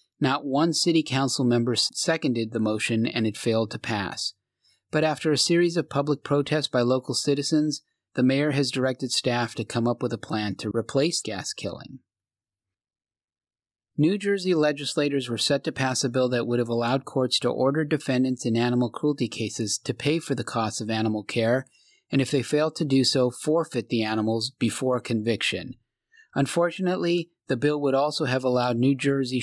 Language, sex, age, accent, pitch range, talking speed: English, male, 30-49, American, 115-145 Hz, 185 wpm